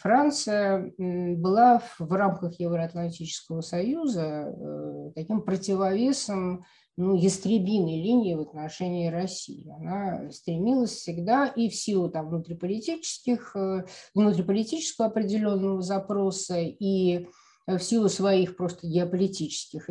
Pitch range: 165-215 Hz